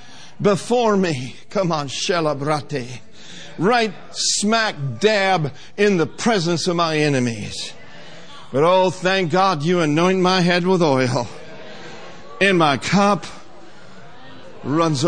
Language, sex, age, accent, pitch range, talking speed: English, male, 60-79, American, 155-230 Hz, 110 wpm